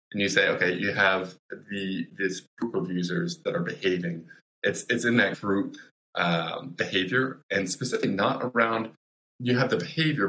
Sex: male